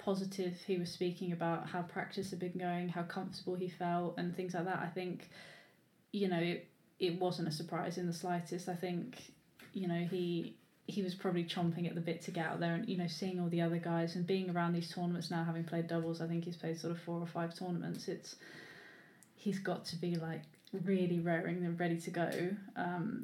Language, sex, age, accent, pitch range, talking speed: English, female, 20-39, British, 170-185 Hz, 220 wpm